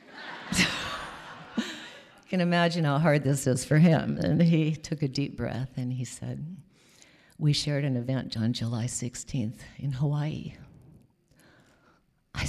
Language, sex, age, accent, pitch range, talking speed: English, female, 50-69, American, 130-155 Hz, 135 wpm